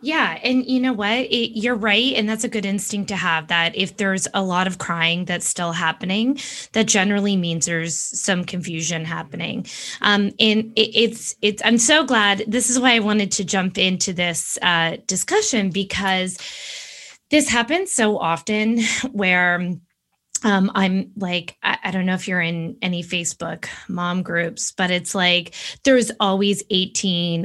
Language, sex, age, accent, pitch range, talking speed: English, female, 20-39, American, 185-235 Hz, 170 wpm